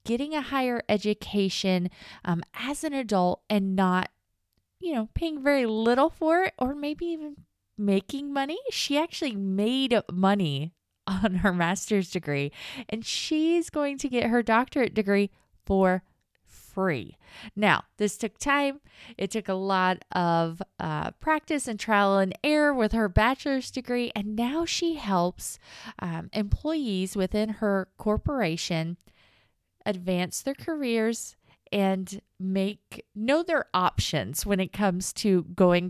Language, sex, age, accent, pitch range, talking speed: English, female, 20-39, American, 185-275 Hz, 135 wpm